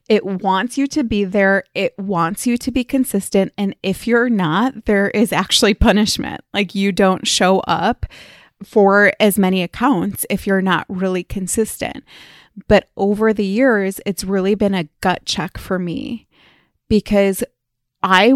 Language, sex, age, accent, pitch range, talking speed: English, female, 20-39, American, 190-225 Hz, 155 wpm